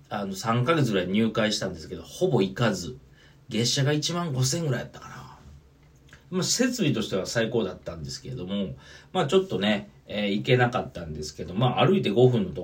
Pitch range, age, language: 95-140 Hz, 40-59, Japanese